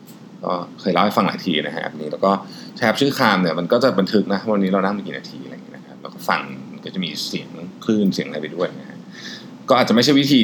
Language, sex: Thai, male